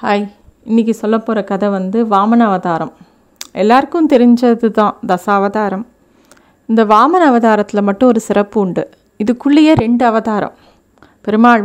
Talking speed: 125 wpm